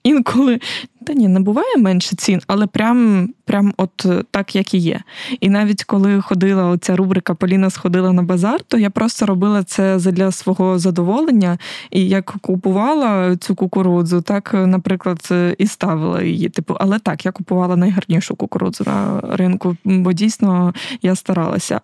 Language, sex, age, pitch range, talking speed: Ukrainian, female, 20-39, 185-210 Hz, 155 wpm